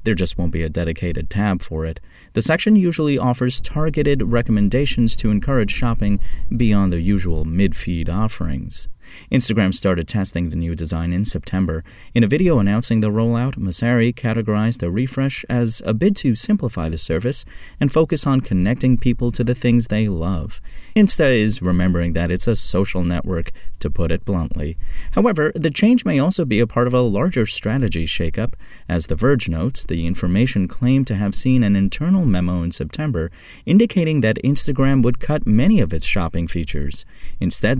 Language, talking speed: English, 175 wpm